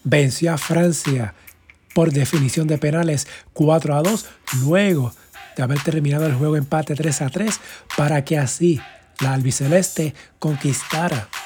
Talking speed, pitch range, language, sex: 135 wpm, 145-170 Hz, Spanish, male